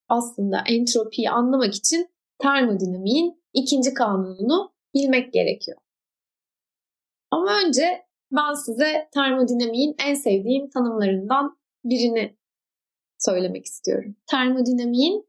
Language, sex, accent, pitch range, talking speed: Turkish, female, native, 220-300 Hz, 80 wpm